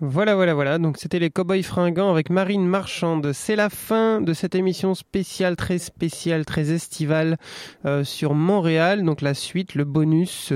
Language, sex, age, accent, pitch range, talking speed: French, male, 20-39, French, 140-185 Hz, 175 wpm